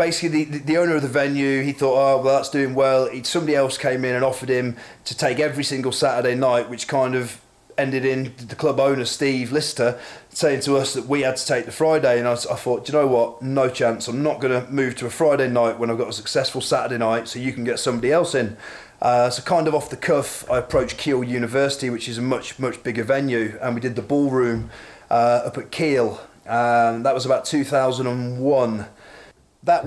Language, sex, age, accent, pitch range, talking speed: English, male, 30-49, British, 120-140 Hz, 225 wpm